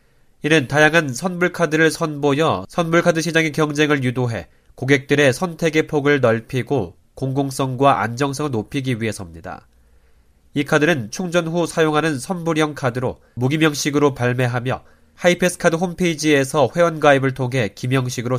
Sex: male